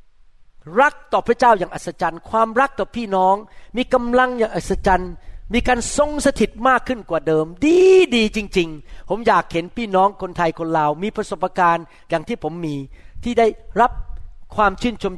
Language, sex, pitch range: Thai, male, 165-225 Hz